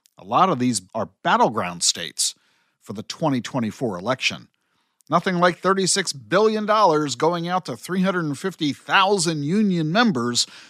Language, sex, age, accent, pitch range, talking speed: English, male, 50-69, American, 120-185 Hz, 120 wpm